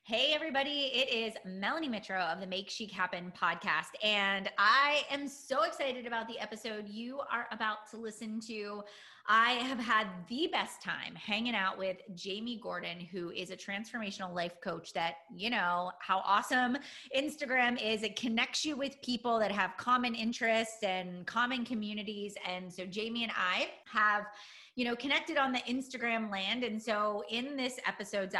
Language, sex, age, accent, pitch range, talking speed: English, female, 30-49, American, 190-245 Hz, 170 wpm